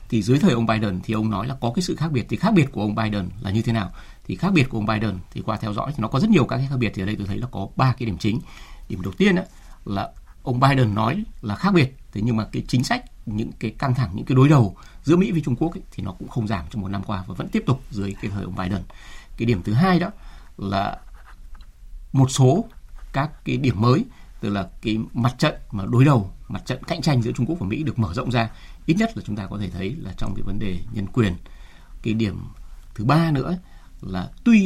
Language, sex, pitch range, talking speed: Vietnamese, male, 100-135 Hz, 275 wpm